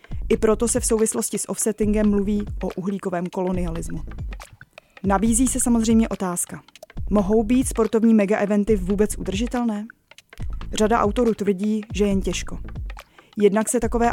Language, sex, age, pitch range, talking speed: Czech, female, 20-39, 195-220 Hz, 130 wpm